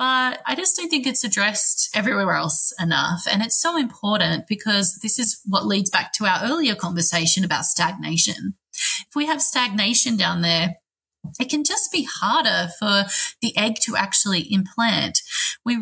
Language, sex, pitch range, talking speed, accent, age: English, female, 185-235 Hz, 165 wpm, Australian, 20-39